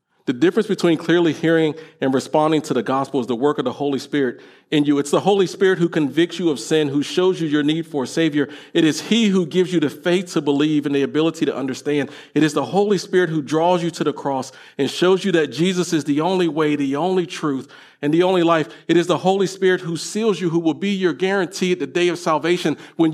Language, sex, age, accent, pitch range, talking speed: English, male, 40-59, American, 140-175 Hz, 250 wpm